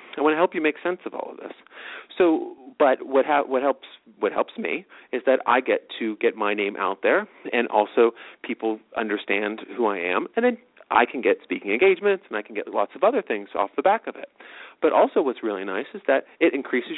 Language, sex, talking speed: English, male, 225 wpm